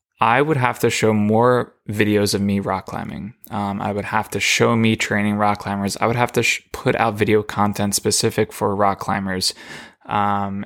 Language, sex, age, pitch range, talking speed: English, male, 20-39, 100-110 Hz, 195 wpm